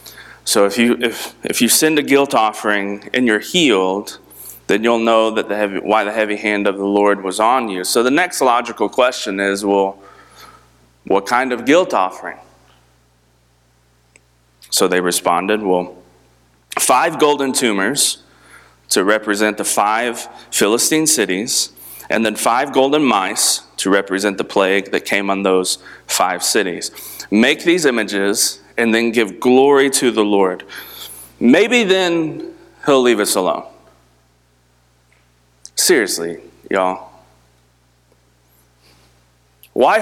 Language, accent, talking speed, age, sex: English, American, 130 wpm, 30-49, male